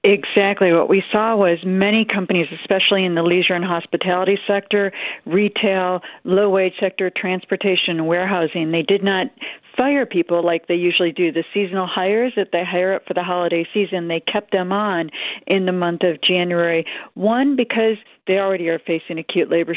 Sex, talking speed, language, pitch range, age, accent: female, 170 wpm, English, 170-200 Hz, 50-69, American